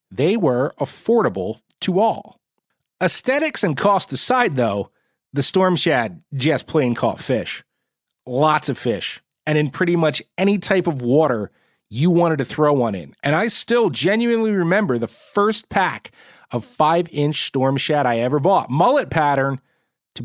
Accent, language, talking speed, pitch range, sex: American, English, 155 wpm, 130-180 Hz, male